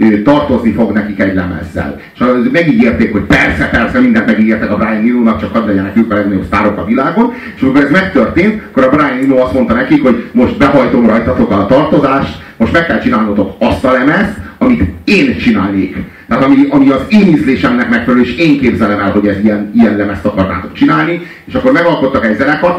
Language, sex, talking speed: Hungarian, male, 195 wpm